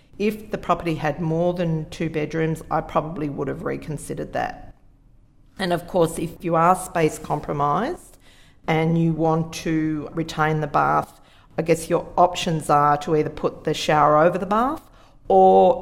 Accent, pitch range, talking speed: Australian, 150-175 Hz, 165 wpm